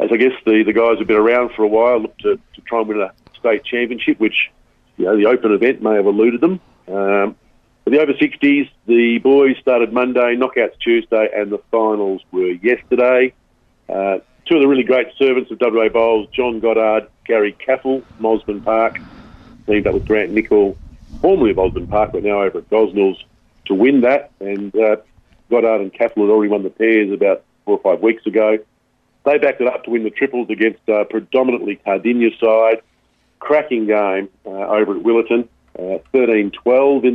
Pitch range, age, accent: 105-125 Hz, 50-69, Australian